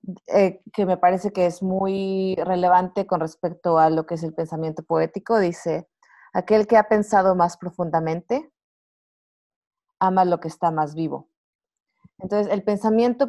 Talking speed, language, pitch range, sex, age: 150 wpm, English, 175-220 Hz, female, 30-49